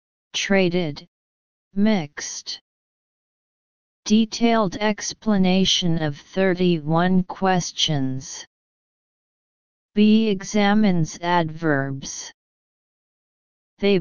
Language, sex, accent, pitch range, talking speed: English, female, American, 150-195 Hz, 45 wpm